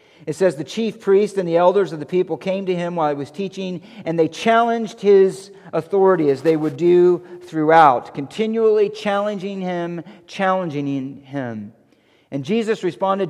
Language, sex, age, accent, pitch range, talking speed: English, male, 50-69, American, 160-220 Hz, 160 wpm